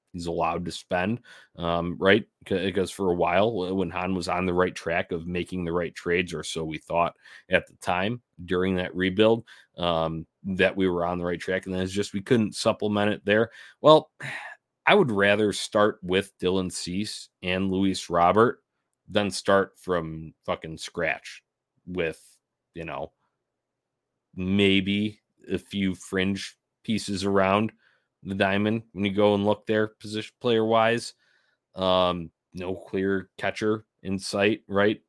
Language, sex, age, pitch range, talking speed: English, male, 30-49, 90-110 Hz, 155 wpm